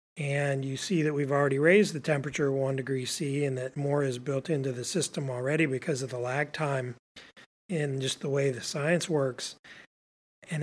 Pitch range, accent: 135-160 Hz, American